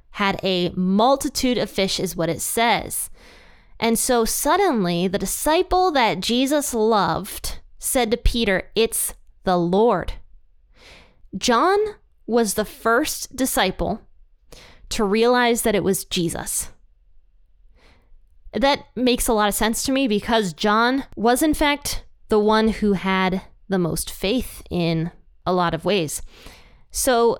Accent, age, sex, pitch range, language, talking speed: American, 20-39, female, 180-240 Hz, English, 130 wpm